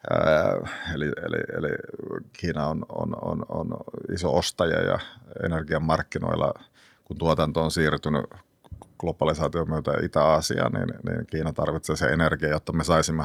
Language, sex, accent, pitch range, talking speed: Finnish, male, native, 80-90 Hz, 130 wpm